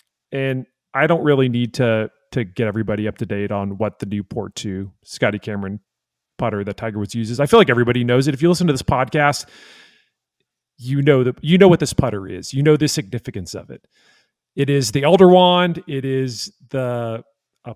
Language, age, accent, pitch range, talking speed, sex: English, 40-59, American, 105-140 Hz, 205 wpm, male